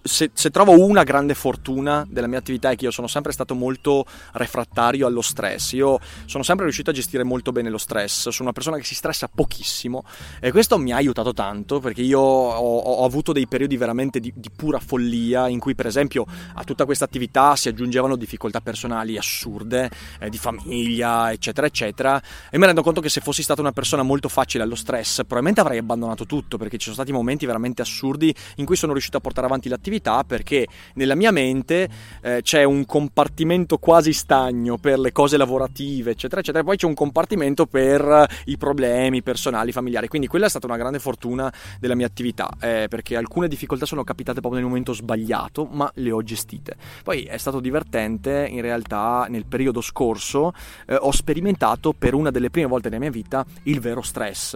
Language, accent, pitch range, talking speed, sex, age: Italian, native, 120-145 Hz, 195 wpm, male, 30-49